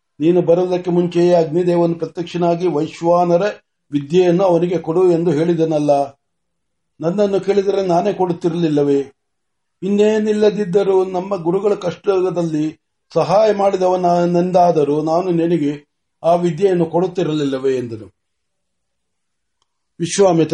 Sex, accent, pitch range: male, native, 165-190 Hz